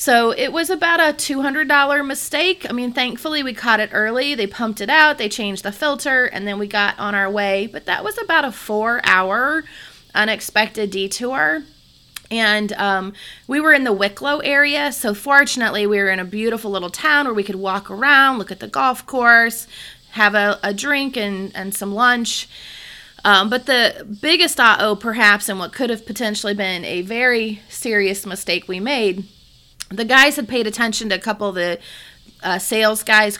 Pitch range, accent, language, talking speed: 205-275 Hz, American, English, 185 wpm